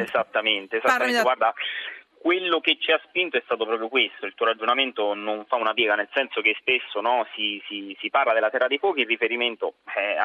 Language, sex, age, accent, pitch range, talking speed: Italian, male, 30-49, native, 110-140 Hz, 205 wpm